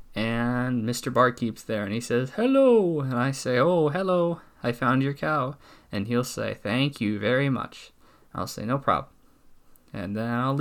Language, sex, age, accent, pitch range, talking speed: English, male, 20-39, American, 110-135 Hz, 175 wpm